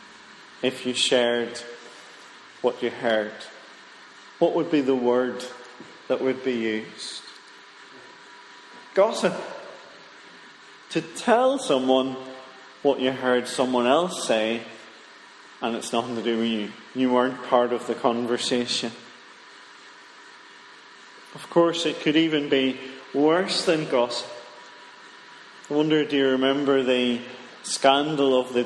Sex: male